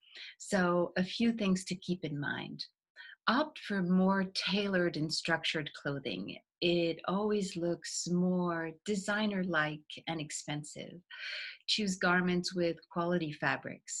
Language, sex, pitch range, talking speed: English, female, 155-180 Hz, 115 wpm